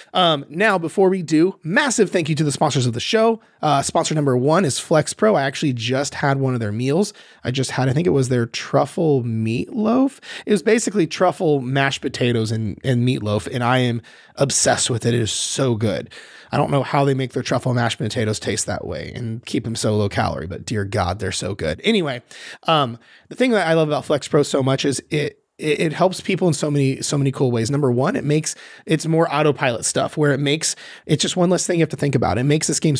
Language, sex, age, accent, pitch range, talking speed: English, male, 30-49, American, 130-165 Hz, 240 wpm